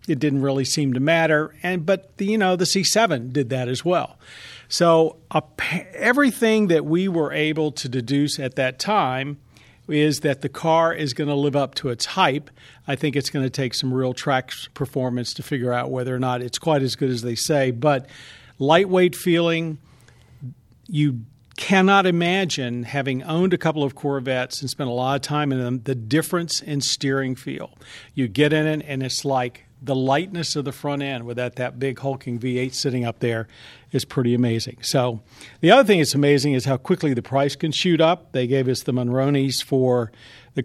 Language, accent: English, American